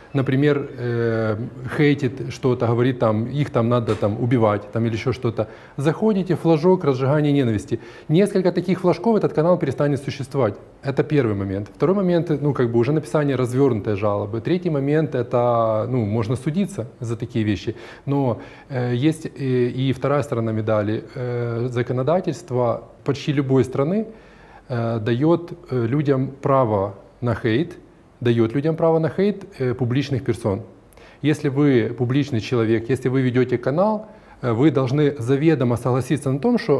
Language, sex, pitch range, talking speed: Russian, male, 115-150 Hz, 150 wpm